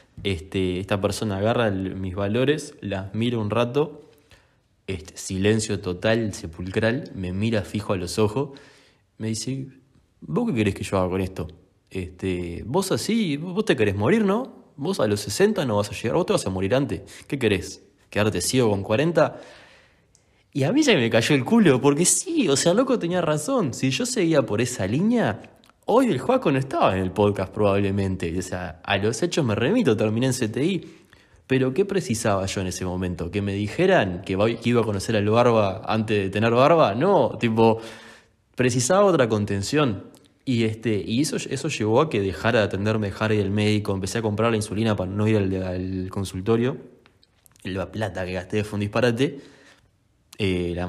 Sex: male